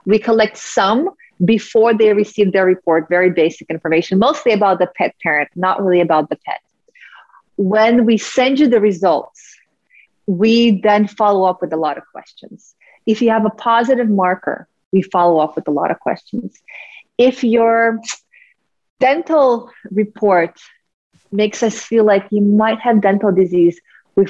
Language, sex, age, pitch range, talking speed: English, female, 30-49, 180-225 Hz, 160 wpm